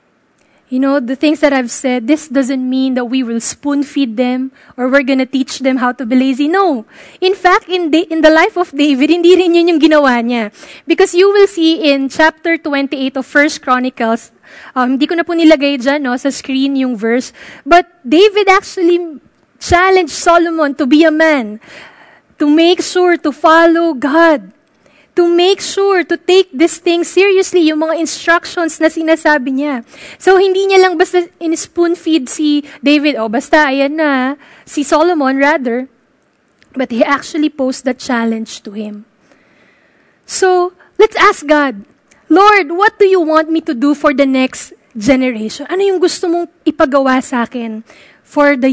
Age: 20-39